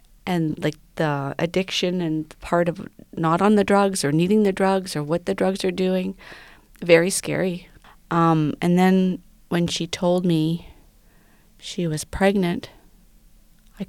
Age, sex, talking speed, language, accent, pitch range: 40-59, female, 145 wpm, English, American, 165-195 Hz